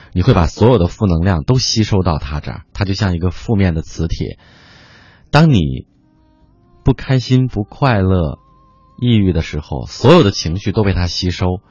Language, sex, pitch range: Chinese, male, 85-115 Hz